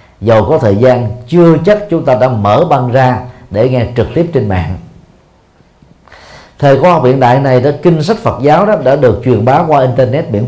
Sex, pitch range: male, 105-145 Hz